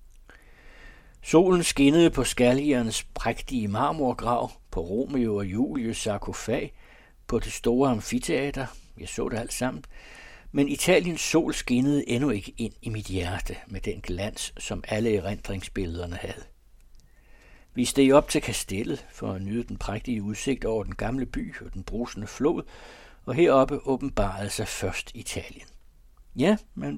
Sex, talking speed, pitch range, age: male, 140 wpm, 100-135 Hz, 60-79